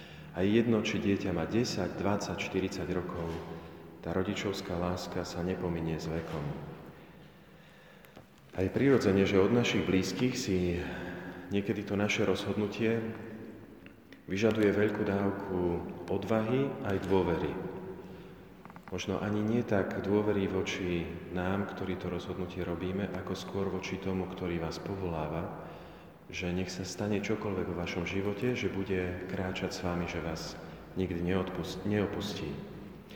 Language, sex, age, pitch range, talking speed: Slovak, male, 40-59, 90-100 Hz, 125 wpm